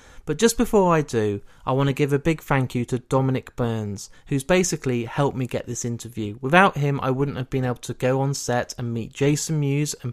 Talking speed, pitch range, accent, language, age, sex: 230 wpm, 120-145 Hz, British, English, 20-39, male